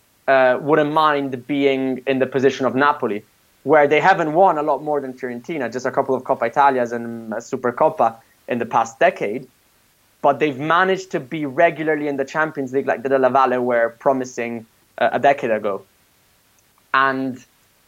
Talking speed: 175 wpm